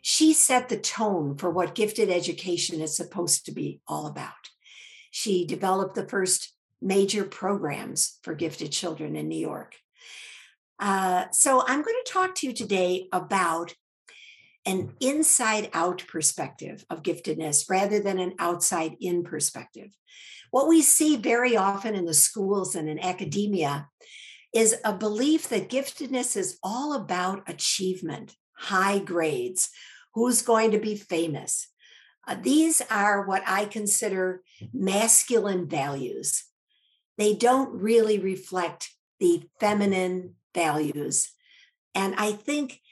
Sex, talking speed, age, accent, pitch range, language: female, 130 wpm, 60-79, American, 180-245 Hz, English